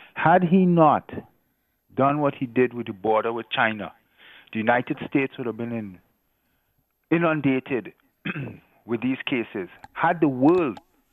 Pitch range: 110-140 Hz